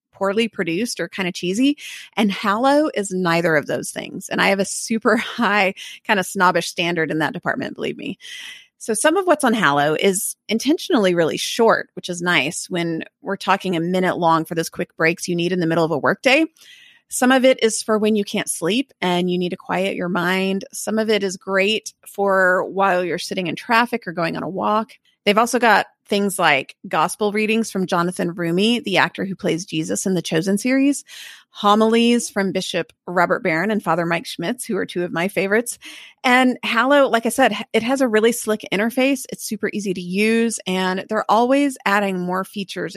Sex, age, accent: female, 30-49, American